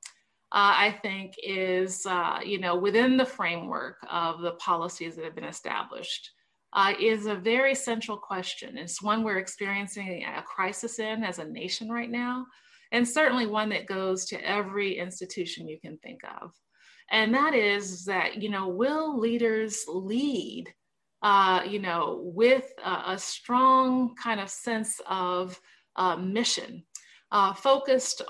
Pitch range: 185-235 Hz